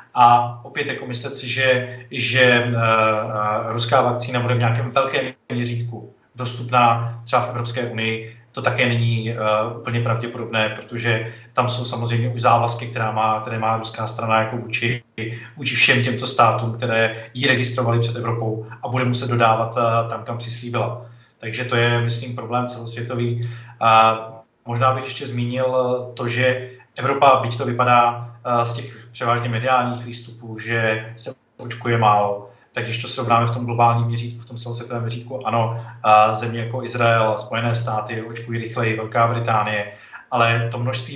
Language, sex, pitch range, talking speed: Czech, male, 115-125 Hz, 155 wpm